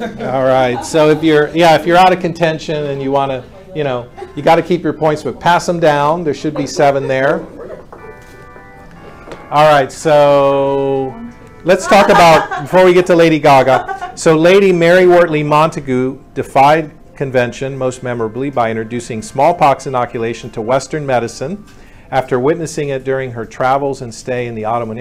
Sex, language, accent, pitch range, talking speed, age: male, English, American, 120-145 Hz, 170 wpm, 50-69